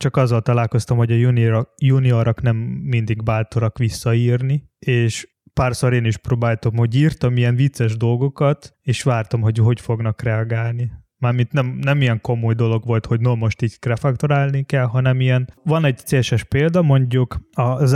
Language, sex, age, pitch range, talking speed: Hungarian, male, 20-39, 115-135 Hz, 155 wpm